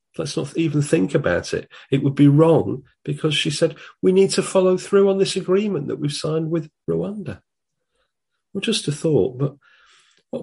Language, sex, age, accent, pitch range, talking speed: English, male, 40-59, British, 110-165 Hz, 185 wpm